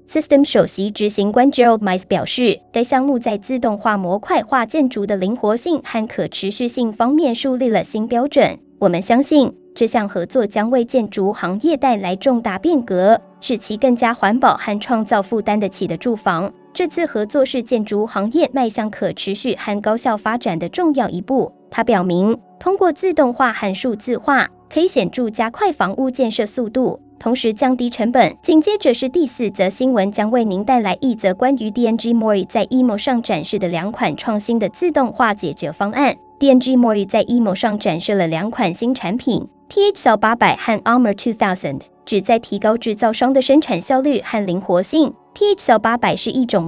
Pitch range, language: 205-260 Hz, Chinese